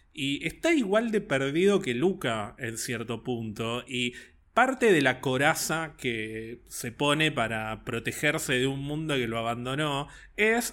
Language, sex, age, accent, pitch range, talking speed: Spanish, male, 20-39, Argentinian, 125-170 Hz, 150 wpm